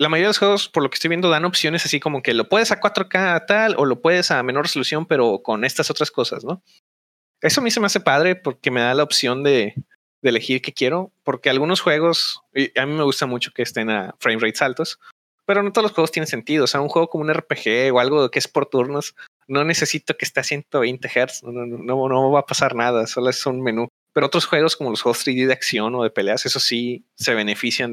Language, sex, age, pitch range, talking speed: Spanish, male, 30-49, 125-160 Hz, 255 wpm